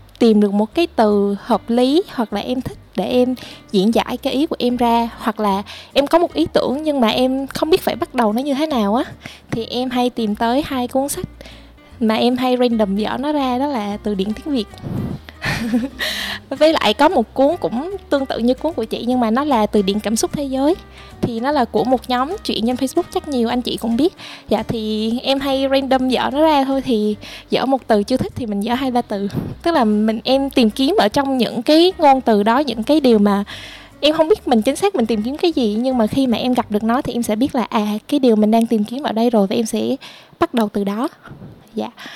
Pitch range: 220-275 Hz